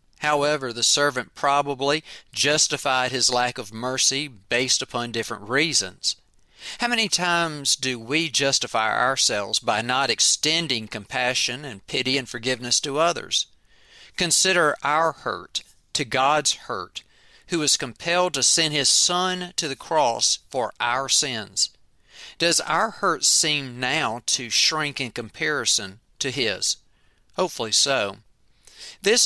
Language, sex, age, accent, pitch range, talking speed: English, male, 40-59, American, 120-150 Hz, 130 wpm